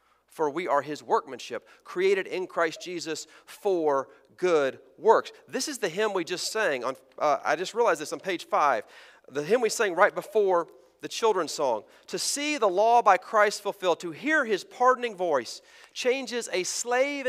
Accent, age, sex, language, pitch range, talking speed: American, 40-59, male, English, 160-245 Hz, 180 wpm